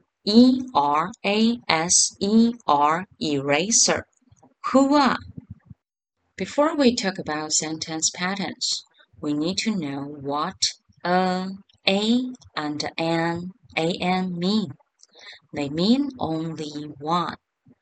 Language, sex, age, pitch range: Chinese, female, 30-49, 150-215 Hz